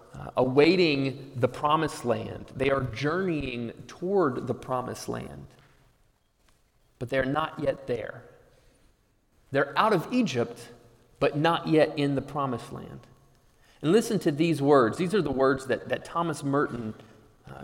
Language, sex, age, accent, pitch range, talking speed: English, male, 30-49, American, 120-165 Hz, 145 wpm